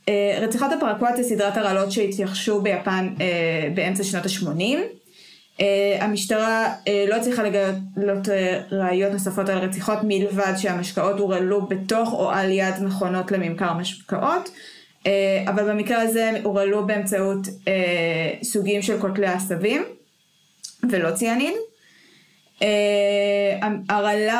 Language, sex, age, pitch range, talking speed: Hebrew, female, 20-39, 190-220 Hz, 115 wpm